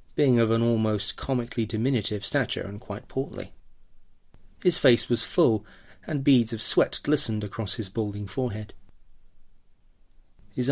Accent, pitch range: British, 105-130 Hz